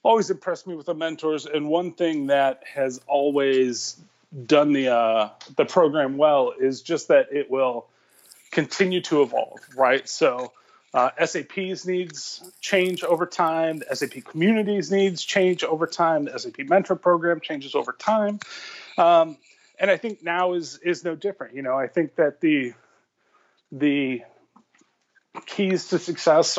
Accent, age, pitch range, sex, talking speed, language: American, 30-49, 140-185 Hz, male, 150 wpm, English